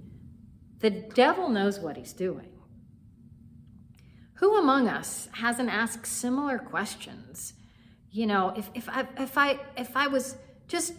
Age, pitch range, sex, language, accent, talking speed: 50-69, 170-255 Hz, female, English, American, 130 wpm